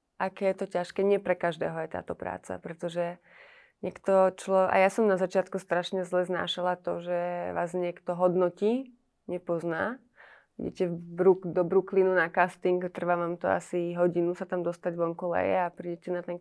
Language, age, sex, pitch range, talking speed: Slovak, 20-39, female, 175-215 Hz, 175 wpm